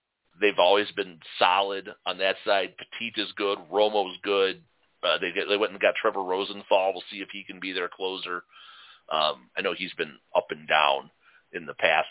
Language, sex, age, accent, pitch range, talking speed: English, male, 40-59, American, 100-135 Hz, 200 wpm